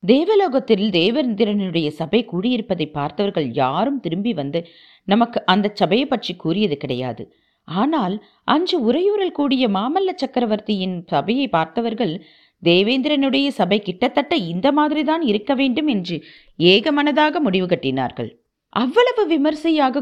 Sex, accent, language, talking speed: female, native, Tamil, 90 wpm